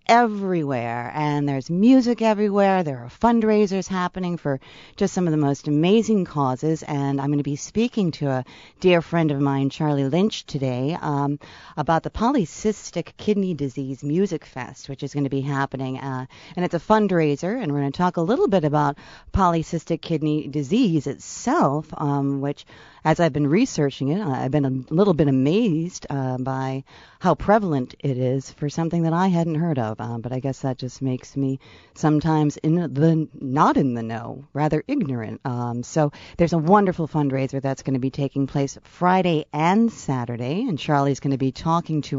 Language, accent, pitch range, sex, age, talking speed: English, American, 135-180 Hz, female, 40-59, 185 wpm